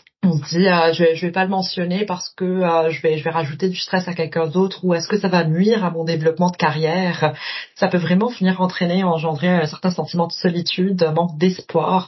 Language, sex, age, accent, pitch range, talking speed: English, female, 30-49, French, 165-200 Hz, 250 wpm